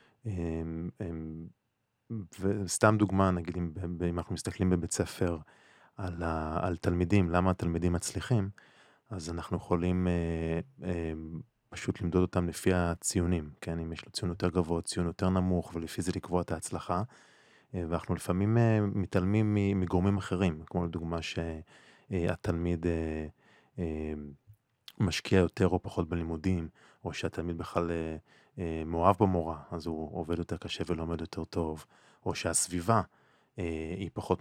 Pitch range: 85-100 Hz